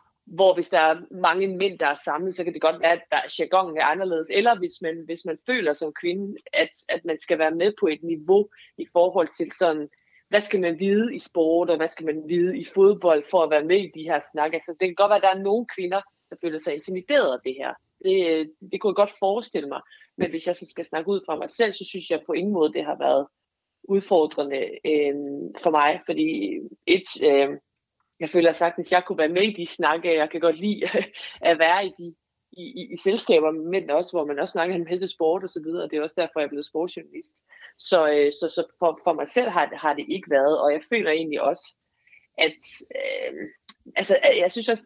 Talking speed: 240 wpm